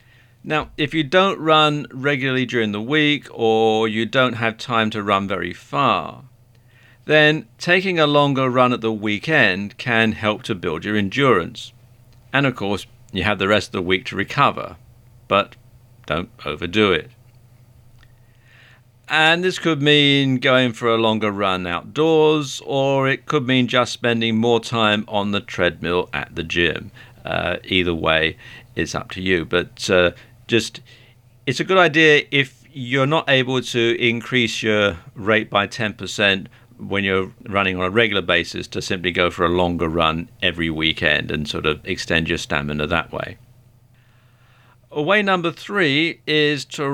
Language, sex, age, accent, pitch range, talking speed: English, male, 50-69, British, 100-130 Hz, 160 wpm